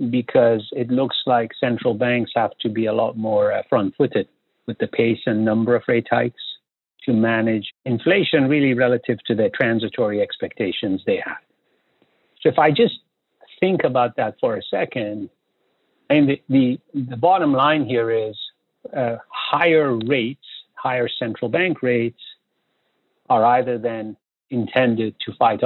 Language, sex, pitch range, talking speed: English, male, 115-140 Hz, 145 wpm